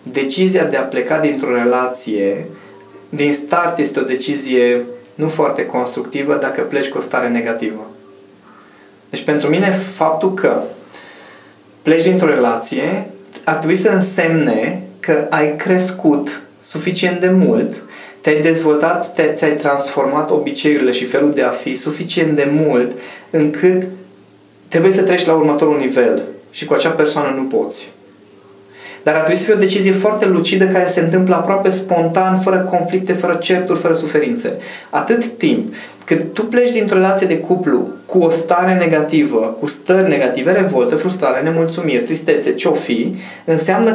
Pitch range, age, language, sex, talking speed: 140-190 Hz, 20-39, Romanian, male, 150 wpm